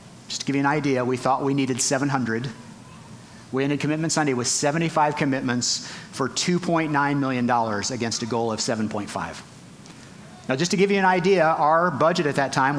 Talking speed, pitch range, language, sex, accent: 180 wpm, 130-170 Hz, English, male, American